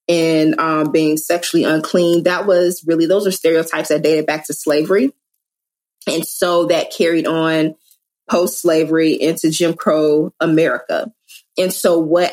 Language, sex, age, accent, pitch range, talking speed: English, female, 30-49, American, 155-180 Hz, 140 wpm